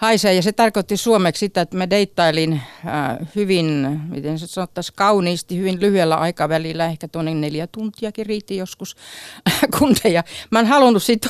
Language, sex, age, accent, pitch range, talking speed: Finnish, female, 50-69, native, 150-205 Hz, 140 wpm